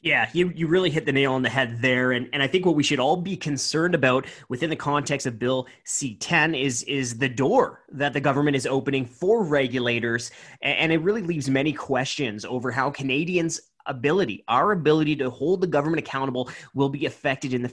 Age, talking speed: 20-39, 210 wpm